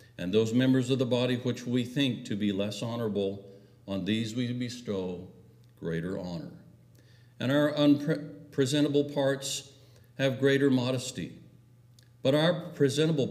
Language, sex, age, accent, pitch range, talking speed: English, male, 60-79, American, 105-130 Hz, 135 wpm